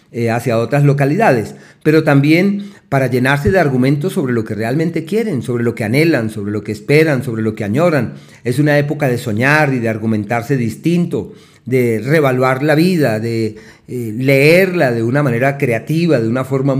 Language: Spanish